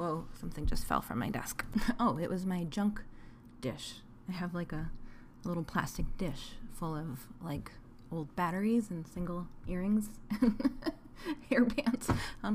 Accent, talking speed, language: American, 150 wpm, English